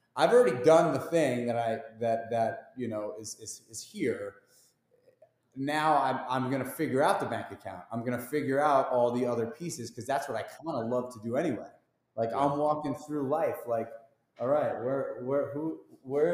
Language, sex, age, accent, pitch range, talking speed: English, male, 30-49, American, 130-195 Hz, 205 wpm